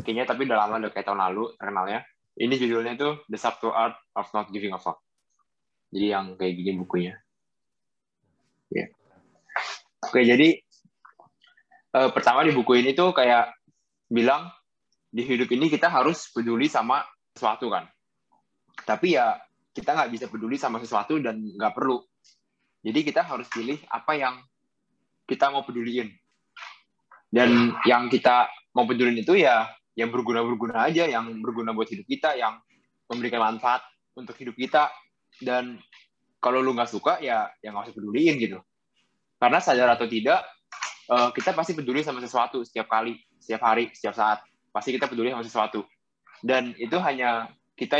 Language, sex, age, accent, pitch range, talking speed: Indonesian, male, 20-39, native, 115-130 Hz, 155 wpm